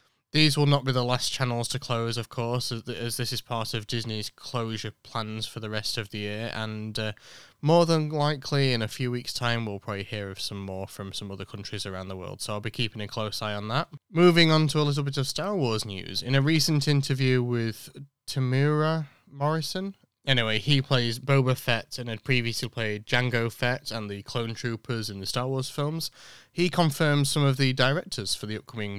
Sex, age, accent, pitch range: male, 20-39, British, 105-135 Hz